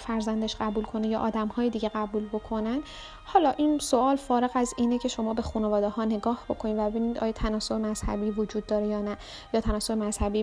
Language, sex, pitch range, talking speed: Persian, female, 215-240 Hz, 195 wpm